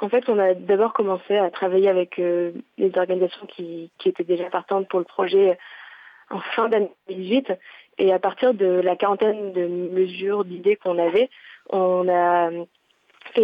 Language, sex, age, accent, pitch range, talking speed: French, female, 20-39, French, 180-205 Hz, 170 wpm